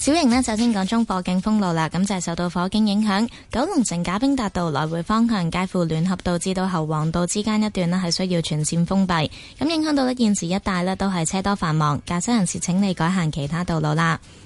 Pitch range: 170-215 Hz